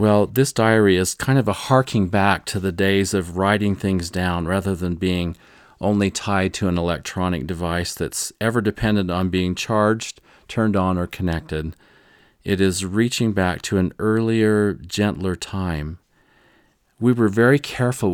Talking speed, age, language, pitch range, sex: 160 wpm, 40-59, English, 95-110 Hz, male